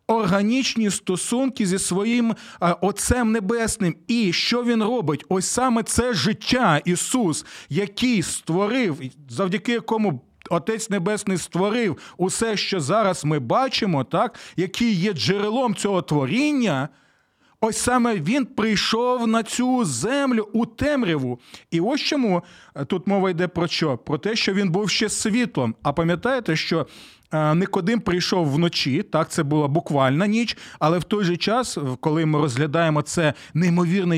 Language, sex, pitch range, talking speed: Ukrainian, male, 165-220 Hz, 135 wpm